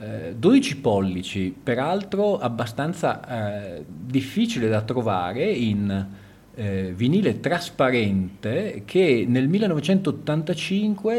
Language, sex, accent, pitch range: Italian, male, native, 100-140 Hz